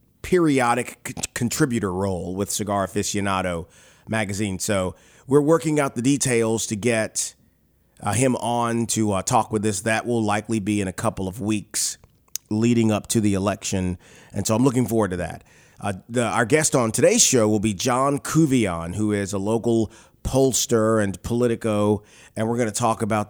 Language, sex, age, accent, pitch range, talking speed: English, male, 30-49, American, 105-125 Hz, 175 wpm